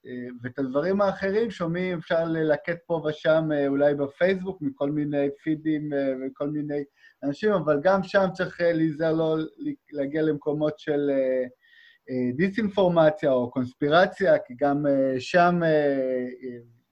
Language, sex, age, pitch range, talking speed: Hebrew, male, 30-49, 135-175 Hz, 110 wpm